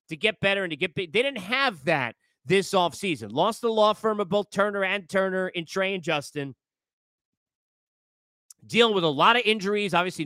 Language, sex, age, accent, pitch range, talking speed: English, male, 40-59, American, 165-220 Hz, 195 wpm